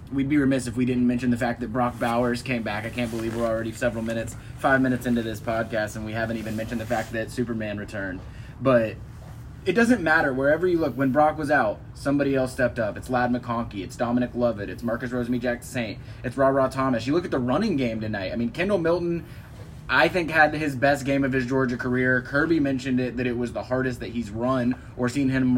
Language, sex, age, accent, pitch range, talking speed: English, male, 20-39, American, 115-135 Hz, 235 wpm